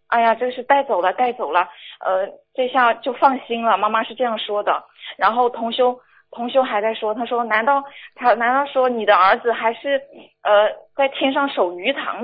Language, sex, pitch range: Chinese, female, 220-270 Hz